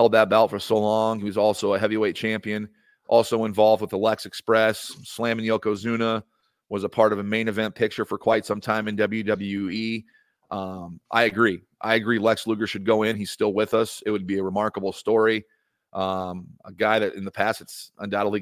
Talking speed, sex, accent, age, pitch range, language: 200 wpm, male, American, 40-59, 100-115 Hz, English